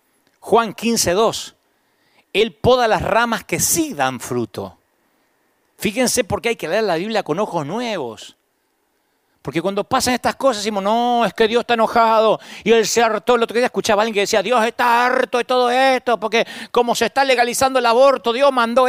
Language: Spanish